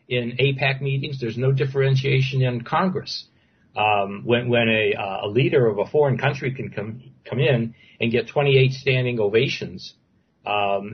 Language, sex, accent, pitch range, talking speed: English, male, American, 120-145 Hz, 160 wpm